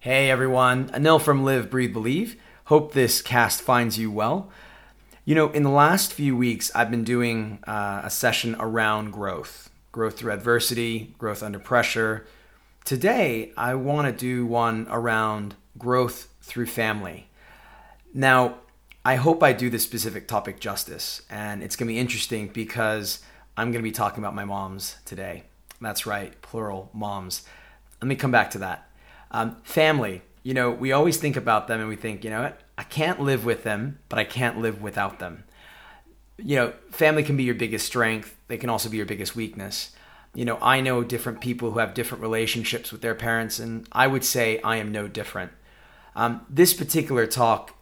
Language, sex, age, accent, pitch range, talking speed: English, male, 30-49, American, 110-130 Hz, 180 wpm